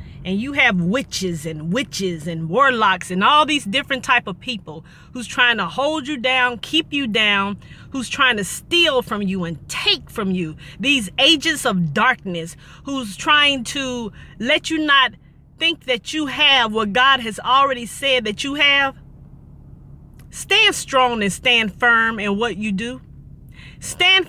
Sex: female